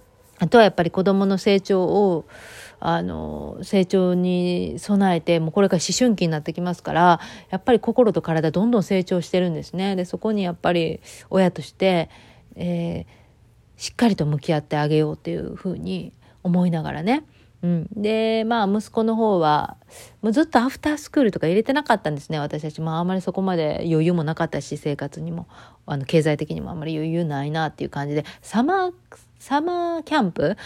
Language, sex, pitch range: Japanese, female, 155-205 Hz